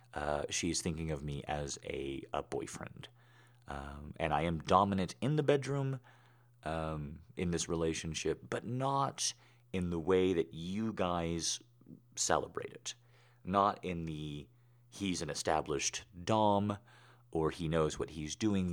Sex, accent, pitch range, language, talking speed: male, American, 80-120 Hz, English, 140 wpm